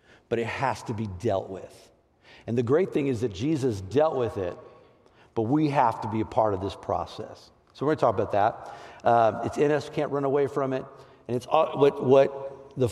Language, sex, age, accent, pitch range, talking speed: English, male, 50-69, American, 110-140 Hz, 230 wpm